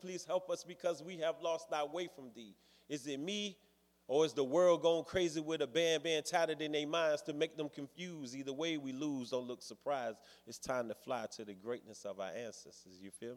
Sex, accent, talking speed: male, American, 230 wpm